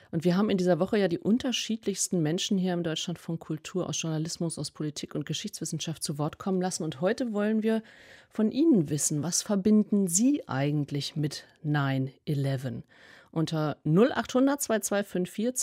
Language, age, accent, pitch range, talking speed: German, 40-59, German, 155-205 Hz, 155 wpm